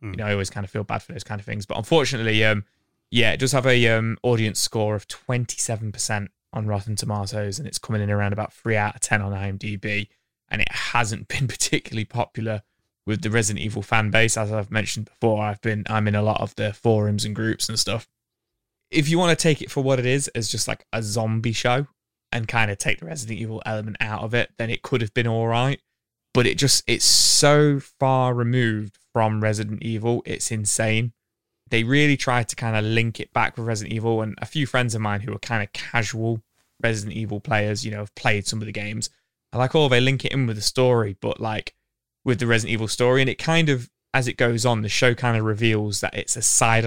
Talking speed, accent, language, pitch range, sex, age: 235 wpm, British, English, 105-120 Hz, male, 20-39